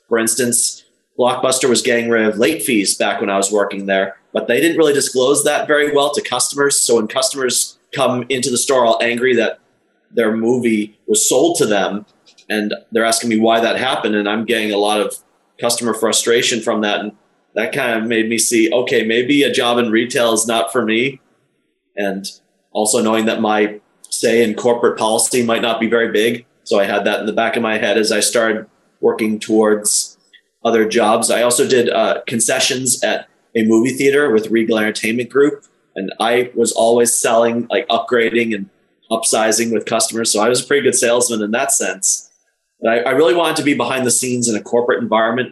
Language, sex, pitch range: English, male, 110-120 Hz